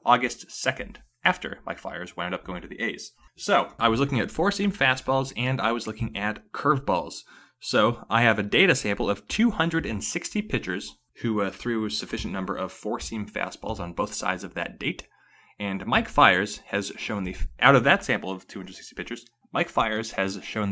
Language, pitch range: English, 95-135 Hz